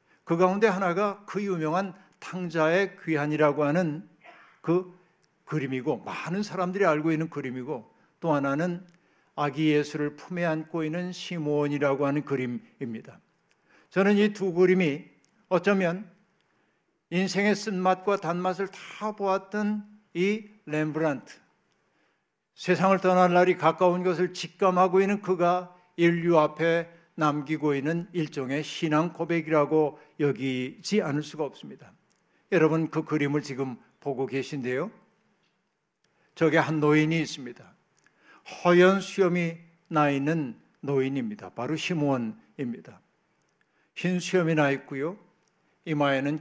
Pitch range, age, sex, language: 150-185 Hz, 60-79, male, Korean